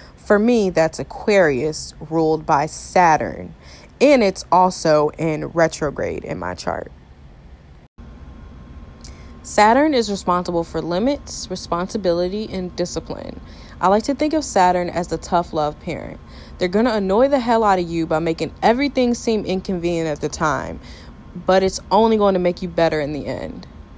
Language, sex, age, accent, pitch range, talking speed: English, female, 20-39, American, 155-200 Hz, 155 wpm